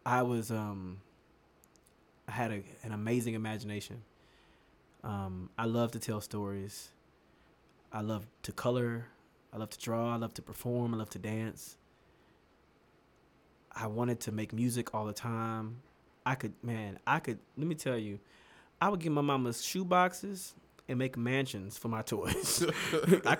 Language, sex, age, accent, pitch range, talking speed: English, male, 20-39, American, 100-120 Hz, 155 wpm